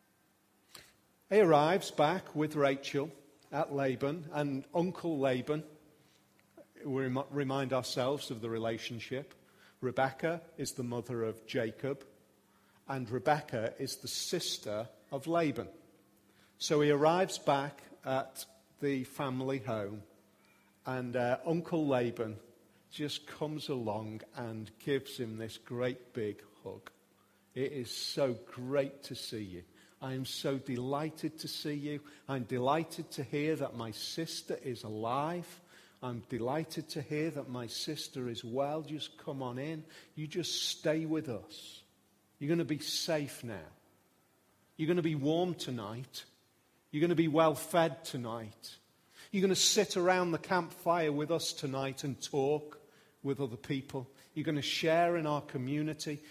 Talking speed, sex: 140 wpm, male